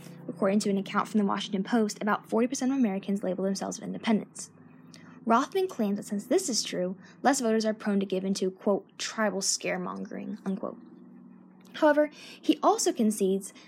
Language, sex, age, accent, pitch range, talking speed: English, female, 10-29, American, 200-250 Hz, 165 wpm